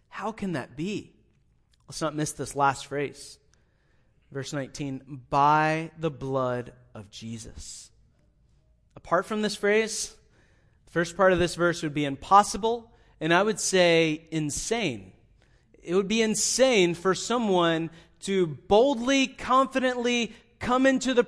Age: 30-49